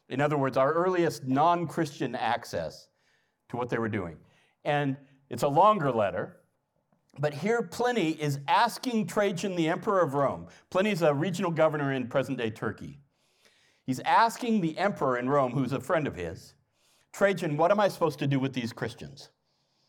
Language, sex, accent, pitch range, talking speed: English, male, American, 140-190 Hz, 165 wpm